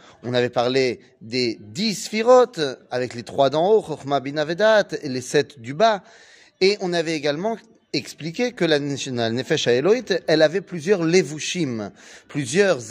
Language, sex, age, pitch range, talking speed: French, male, 30-49, 140-195 Hz, 145 wpm